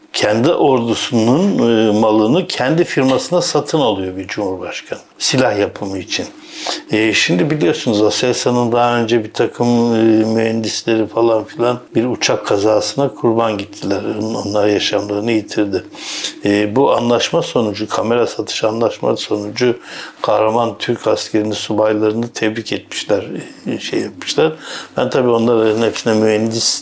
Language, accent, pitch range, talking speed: Turkish, native, 105-120 Hz, 125 wpm